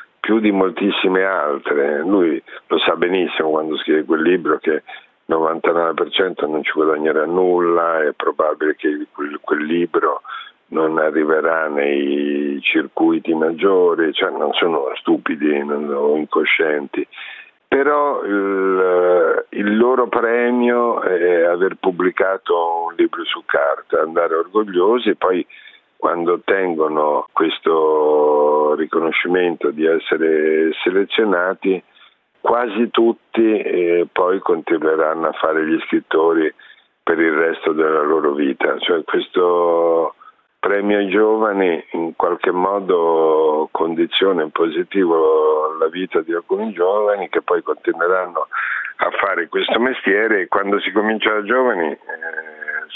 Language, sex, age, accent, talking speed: Italian, male, 50-69, native, 115 wpm